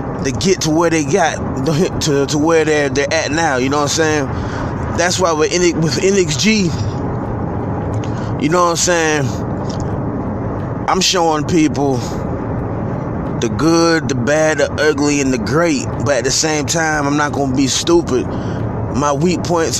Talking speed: 165 wpm